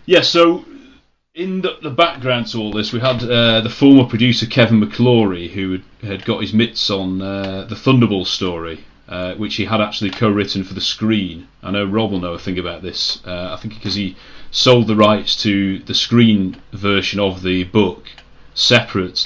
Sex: male